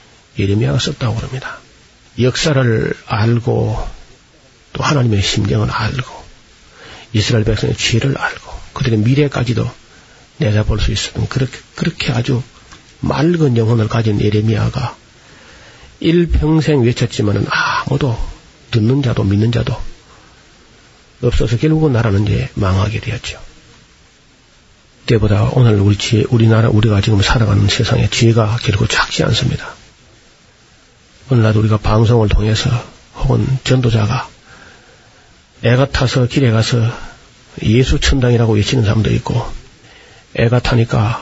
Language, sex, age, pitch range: Korean, male, 40-59, 110-130 Hz